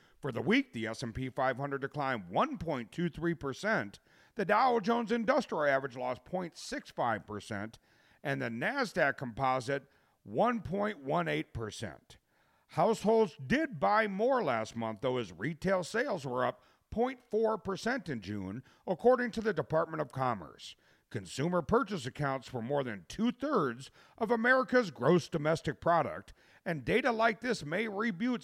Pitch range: 135-215 Hz